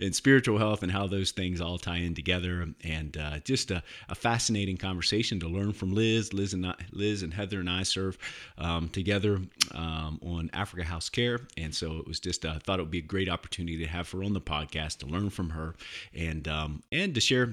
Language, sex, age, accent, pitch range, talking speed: English, male, 30-49, American, 80-105 Hz, 230 wpm